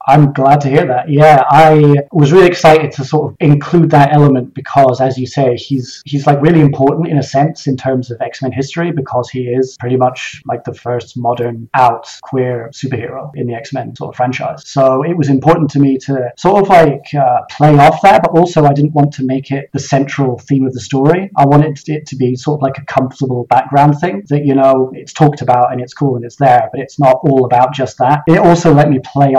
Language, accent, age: English, British, 20-39